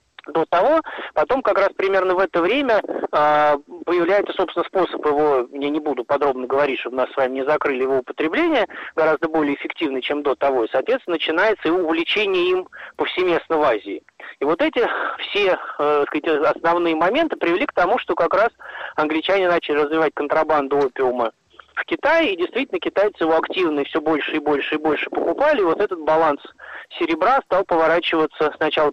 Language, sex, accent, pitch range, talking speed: Russian, male, native, 145-185 Hz, 170 wpm